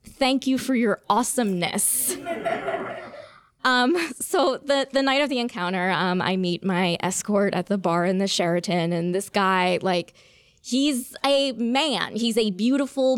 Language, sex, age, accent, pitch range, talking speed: English, female, 20-39, American, 190-245 Hz, 155 wpm